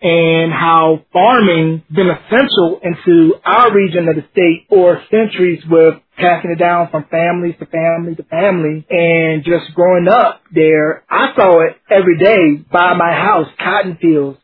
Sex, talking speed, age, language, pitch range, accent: male, 160 wpm, 20-39, English, 170-210 Hz, American